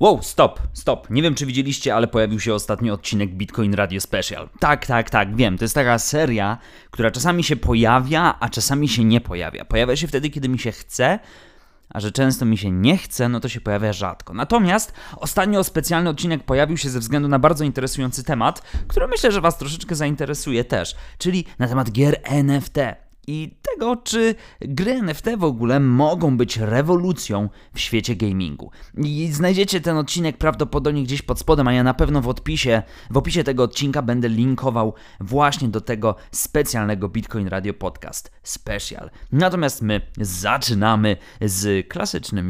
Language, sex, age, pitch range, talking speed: Polish, male, 20-39, 105-150 Hz, 170 wpm